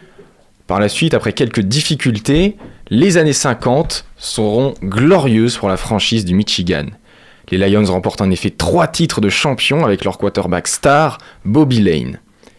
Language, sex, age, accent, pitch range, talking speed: French, male, 20-39, French, 100-145 Hz, 150 wpm